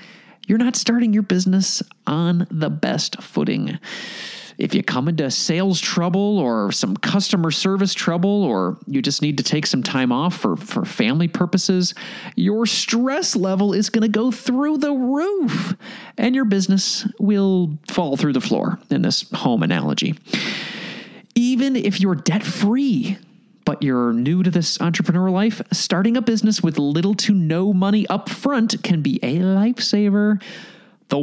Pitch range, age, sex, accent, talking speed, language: 185-230 Hz, 30-49, male, American, 155 wpm, English